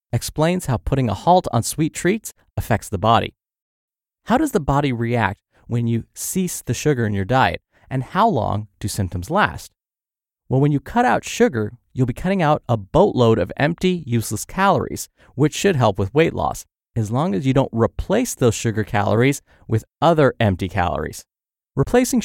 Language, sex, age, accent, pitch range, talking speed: English, male, 30-49, American, 105-150 Hz, 180 wpm